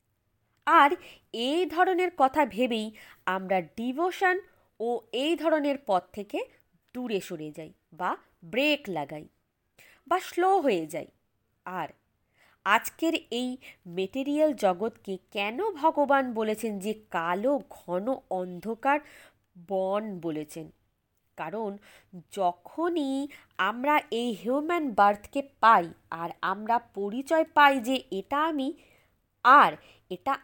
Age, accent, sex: 20-39, native, female